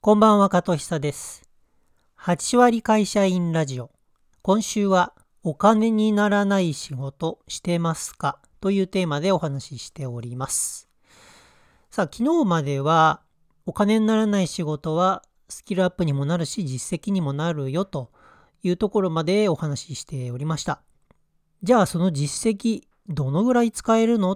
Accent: native